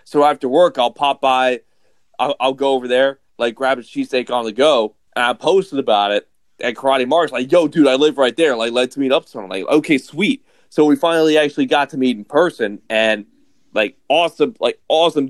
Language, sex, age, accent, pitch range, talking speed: English, male, 30-49, American, 120-145 Hz, 215 wpm